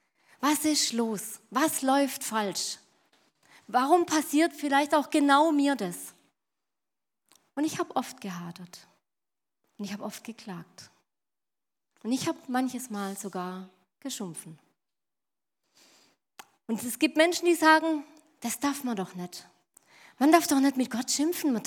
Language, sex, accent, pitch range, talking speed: German, female, German, 215-300 Hz, 135 wpm